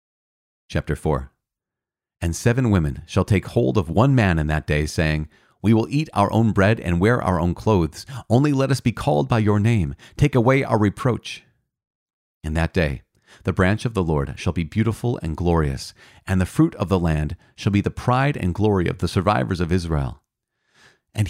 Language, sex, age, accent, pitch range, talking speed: English, male, 40-59, American, 85-115 Hz, 195 wpm